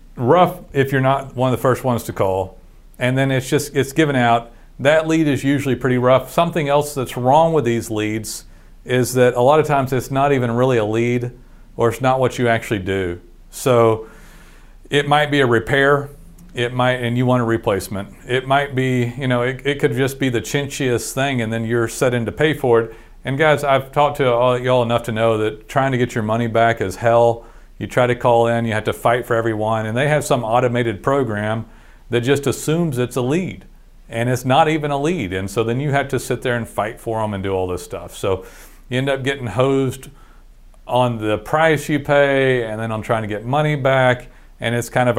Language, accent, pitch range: English, American, 115-135 Hz